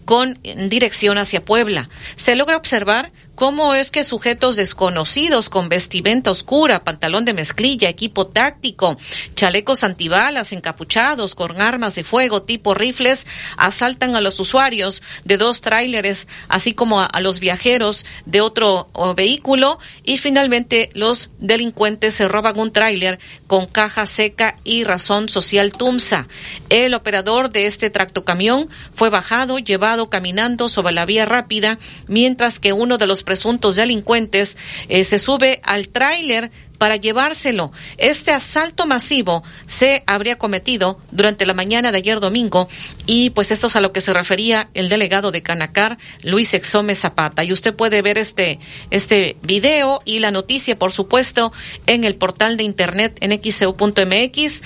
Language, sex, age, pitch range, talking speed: Spanish, female, 40-59, 190-240 Hz, 145 wpm